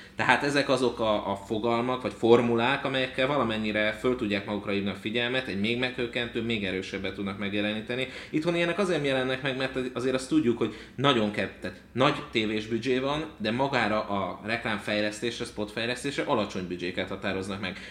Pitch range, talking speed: 100-120 Hz, 160 wpm